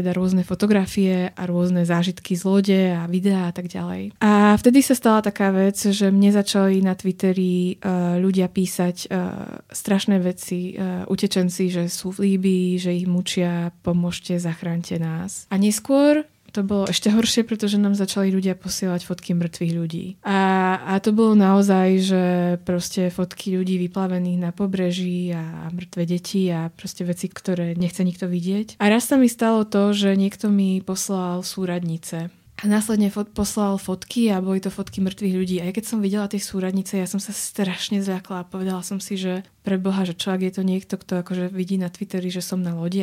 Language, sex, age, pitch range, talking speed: Slovak, female, 20-39, 185-205 Hz, 185 wpm